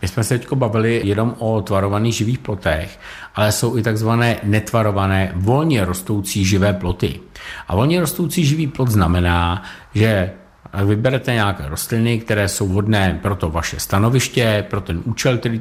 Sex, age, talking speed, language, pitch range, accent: male, 50-69, 155 wpm, Czech, 95-115 Hz, native